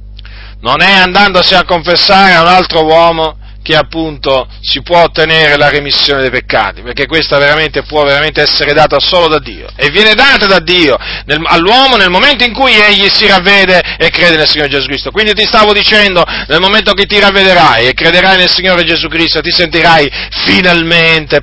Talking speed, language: 180 wpm, Italian